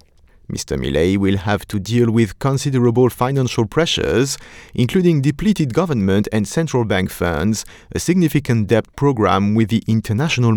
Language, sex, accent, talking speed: English, male, French, 135 wpm